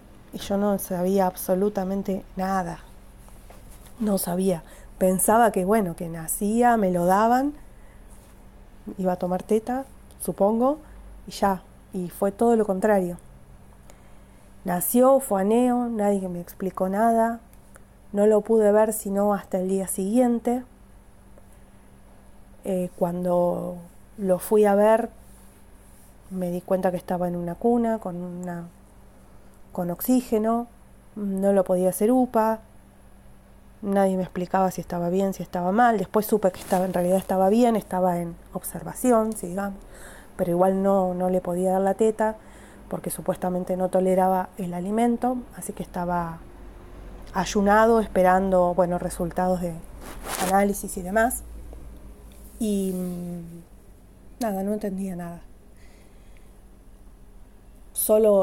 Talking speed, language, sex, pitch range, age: 125 wpm, Spanish, female, 180-215 Hz, 20-39